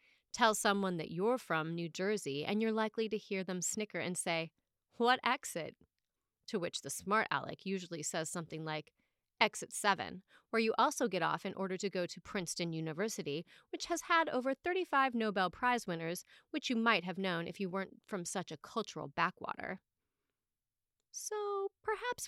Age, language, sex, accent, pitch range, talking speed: 30-49, English, female, American, 185-270 Hz, 170 wpm